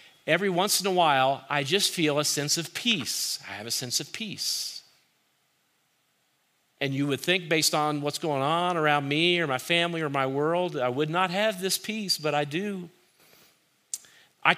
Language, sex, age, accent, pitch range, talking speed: English, male, 40-59, American, 135-165 Hz, 185 wpm